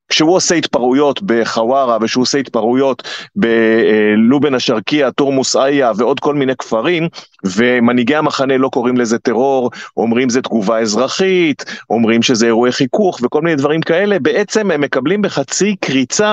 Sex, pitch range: male, 120-165 Hz